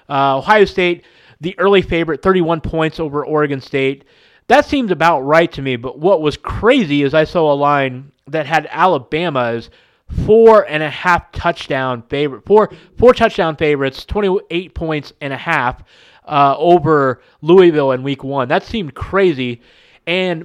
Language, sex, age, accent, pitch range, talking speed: English, male, 20-39, American, 135-170 Hz, 160 wpm